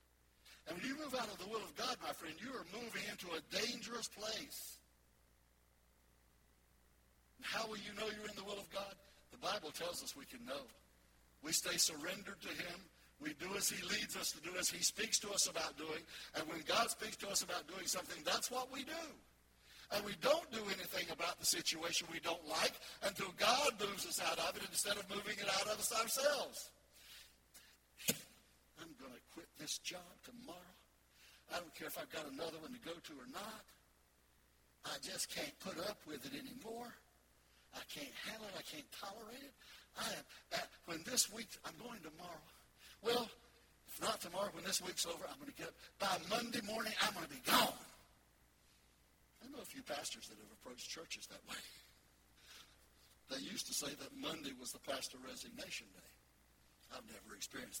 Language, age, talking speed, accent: English, 60-79, 185 wpm, American